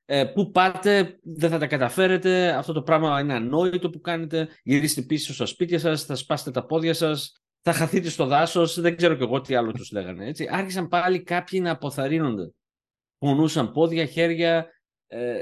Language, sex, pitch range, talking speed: Greek, male, 145-180 Hz, 180 wpm